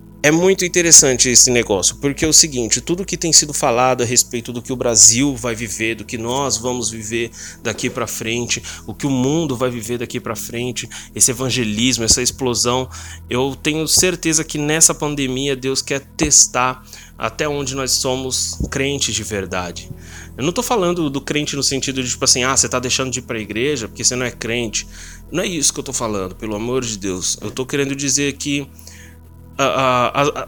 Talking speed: 195 wpm